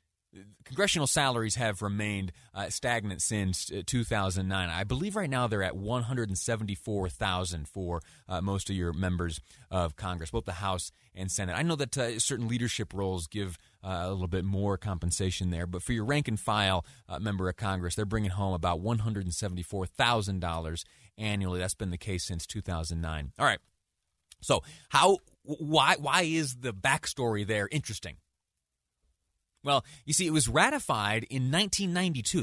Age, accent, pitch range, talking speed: 30-49, American, 90-140 Hz, 150 wpm